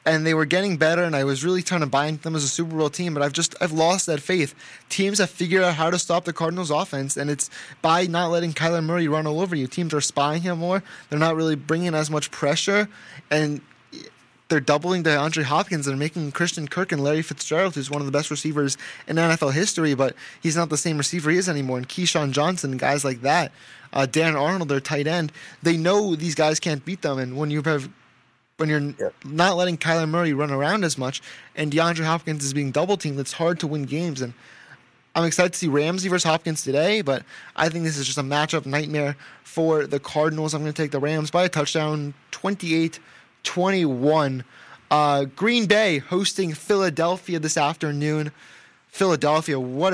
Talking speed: 210 wpm